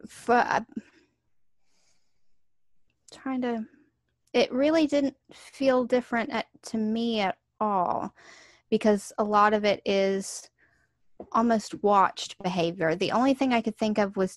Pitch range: 175-220 Hz